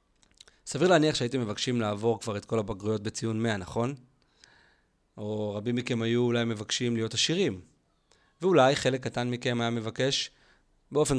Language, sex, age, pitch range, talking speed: Hebrew, male, 30-49, 110-155 Hz, 145 wpm